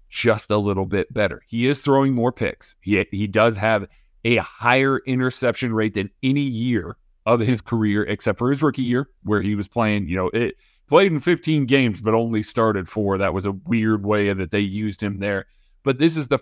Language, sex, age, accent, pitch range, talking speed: English, male, 30-49, American, 105-125 Hz, 210 wpm